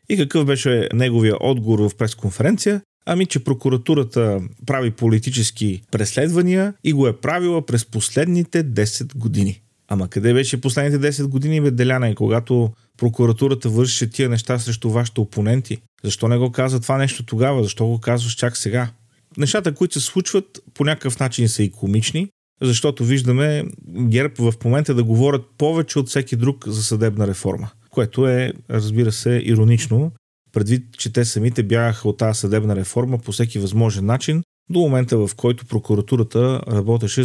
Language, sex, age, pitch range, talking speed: Bulgarian, male, 40-59, 110-135 Hz, 155 wpm